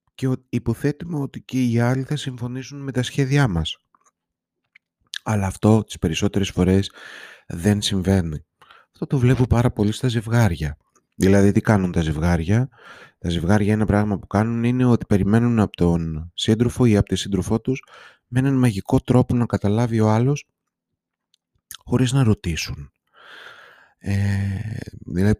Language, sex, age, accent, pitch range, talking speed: Greek, male, 30-49, native, 90-110 Hz, 145 wpm